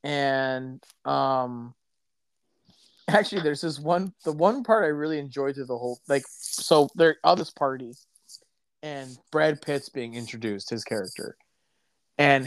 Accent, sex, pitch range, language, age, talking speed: American, male, 135-205 Hz, English, 30-49, 145 wpm